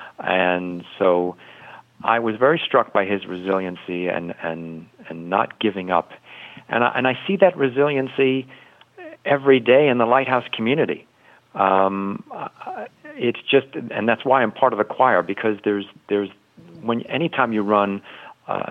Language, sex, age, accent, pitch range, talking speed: English, male, 50-69, American, 85-120 Hz, 155 wpm